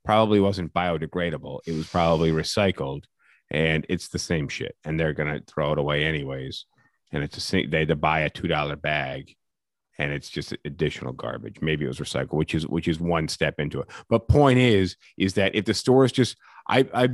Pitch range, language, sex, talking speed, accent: 90-120 Hz, English, male, 200 wpm, American